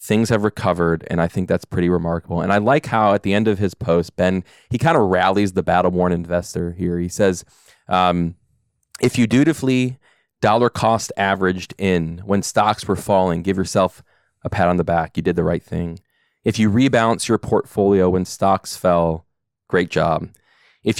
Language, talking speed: English, 185 wpm